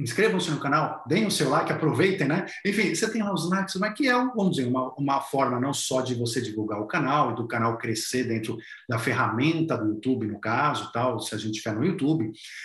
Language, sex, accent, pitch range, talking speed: Portuguese, male, Brazilian, 125-190 Hz, 230 wpm